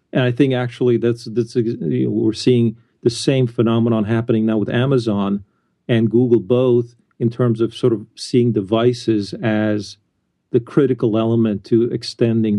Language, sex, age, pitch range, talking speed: English, male, 50-69, 110-125 Hz, 155 wpm